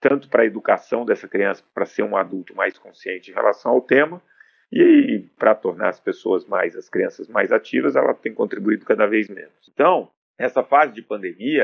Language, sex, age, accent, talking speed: Portuguese, male, 40-59, Brazilian, 190 wpm